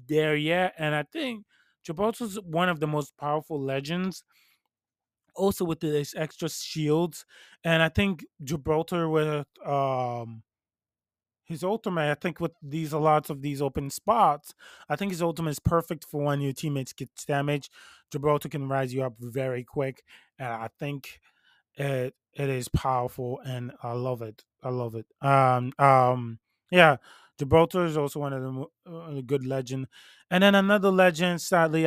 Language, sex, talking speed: English, male, 160 wpm